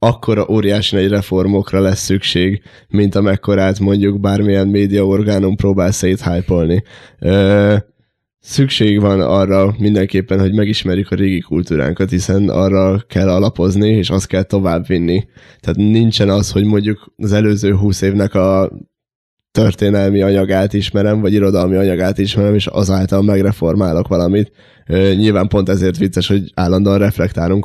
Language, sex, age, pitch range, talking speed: Hungarian, male, 10-29, 90-100 Hz, 130 wpm